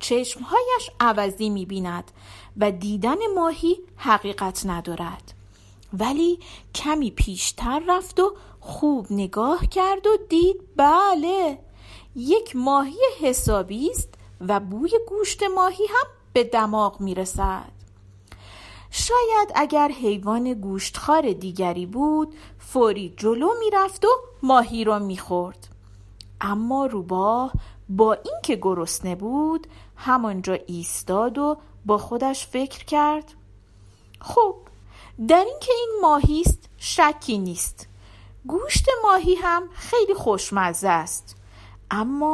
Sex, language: female, Persian